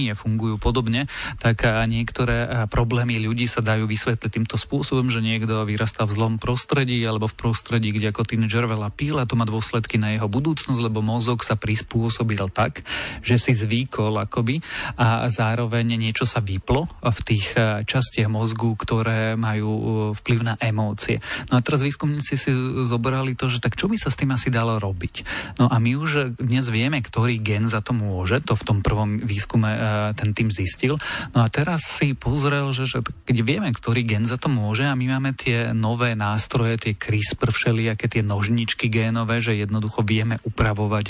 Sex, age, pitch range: male, 30-49, 110-130 Hz